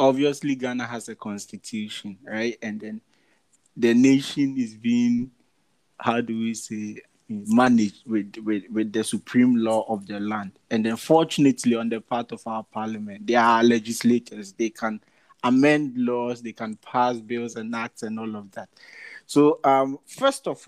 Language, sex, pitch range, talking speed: English, male, 110-150 Hz, 160 wpm